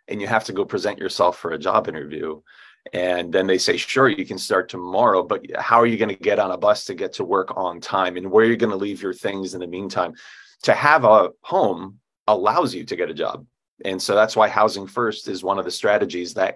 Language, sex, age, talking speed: English, male, 30-49, 255 wpm